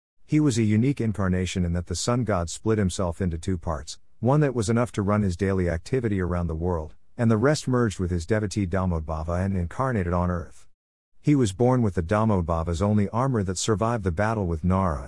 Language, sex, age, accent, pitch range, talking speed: English, male, 50-69, American, 90-115 Hz, 210 wpm